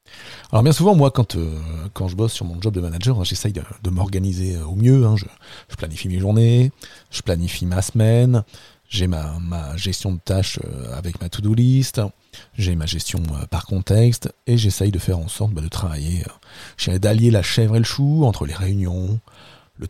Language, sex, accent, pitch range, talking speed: French, male, French, 95-120 Hz, 195 wpm